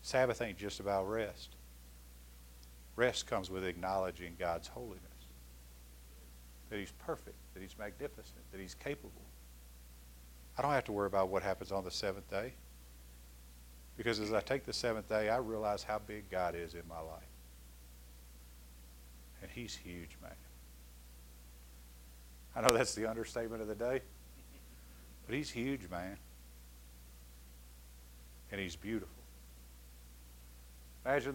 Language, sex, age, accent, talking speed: English, male, 50-69, American, 130 wpm